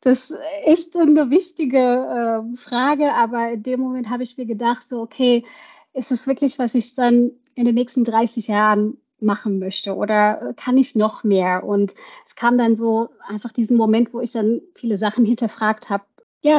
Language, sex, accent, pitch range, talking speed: German, female, German, 205-245 Hz, 175 wpm